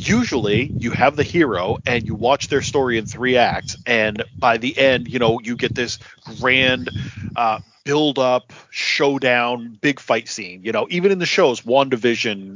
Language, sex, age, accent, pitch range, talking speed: English, male, 40-59, American, 115-135 Hz, 175 wpm